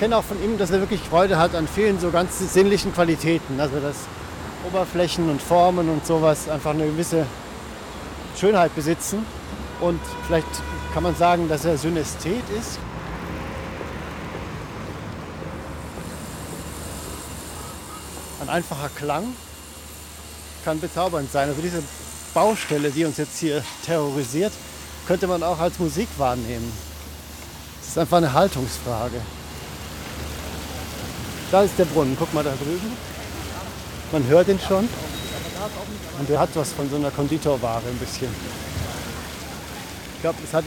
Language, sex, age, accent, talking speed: German, male, 50-69, German, 130 wpm